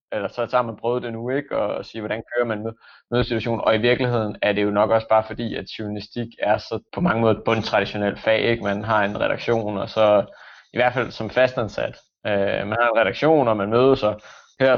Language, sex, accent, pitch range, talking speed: Danish, male, native, 105-120 Hz, 230 wpm